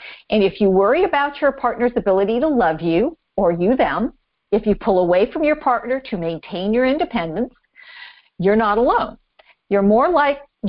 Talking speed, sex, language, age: 175 wpm, female, English, 50-69